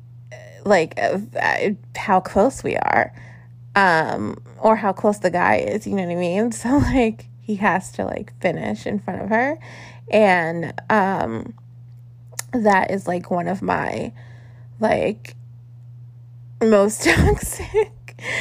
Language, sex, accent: English, female, American